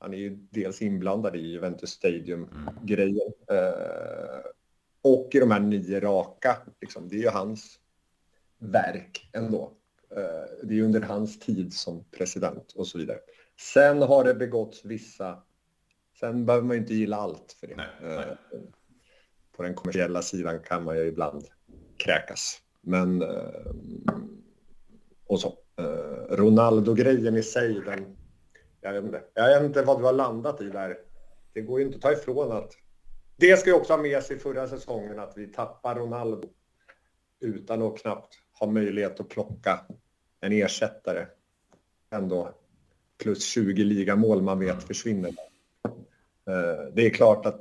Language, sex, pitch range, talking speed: Swedish, male, 95-130 Hz, 155 wpm